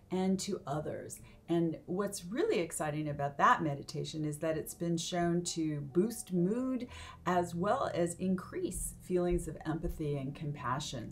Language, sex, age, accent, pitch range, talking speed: English, female, 40-59, American, 145-175 Hz, 145 wpm